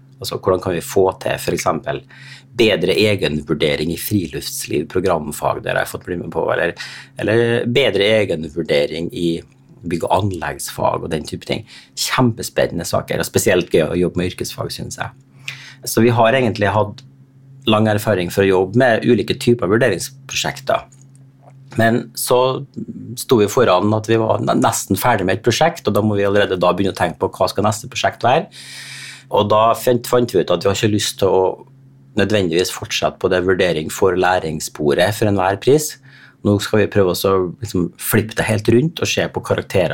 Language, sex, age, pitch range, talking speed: English, male, 30-49, 95-130 Hz, 175 wpm